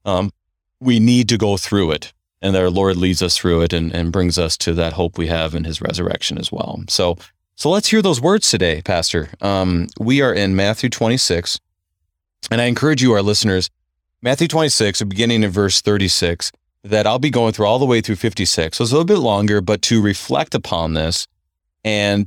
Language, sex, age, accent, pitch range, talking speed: English, male, 30-49, American, 85-115 Hz, 205 wpm